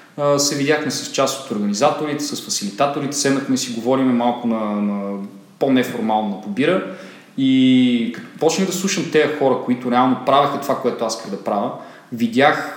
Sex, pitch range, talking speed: male, 115-150 Hz, 155 wpm